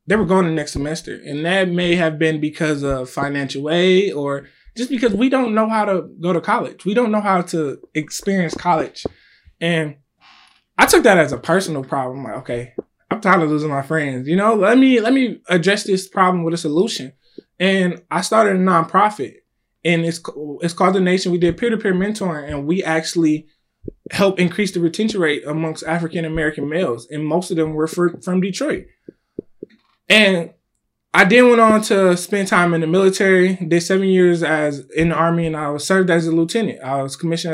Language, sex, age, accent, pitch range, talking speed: English, male, 20-39, American, 150-190 Hz, 195 wpm